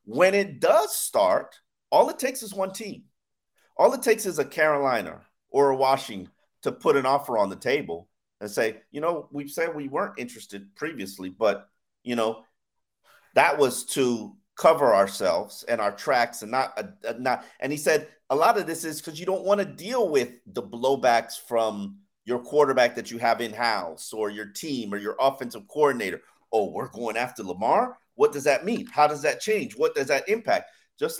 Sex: male